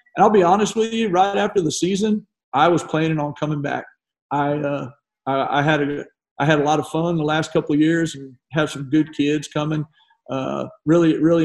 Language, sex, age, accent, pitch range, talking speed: English, male, 50-69, American, 135-155 Hz, 220 wpm